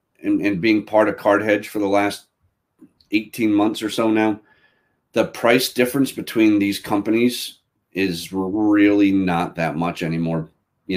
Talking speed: 155 wpm